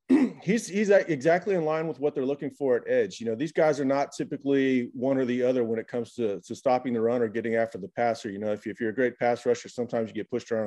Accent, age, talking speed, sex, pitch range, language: American, 30-49, 285 wpm, male, 115-135 Hz, English